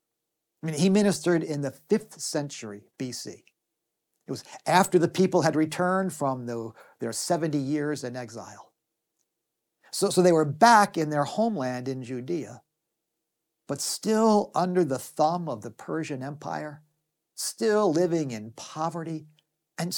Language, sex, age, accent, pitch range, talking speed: English, male, 50-69, American, 130-180 Hz, 140 wpm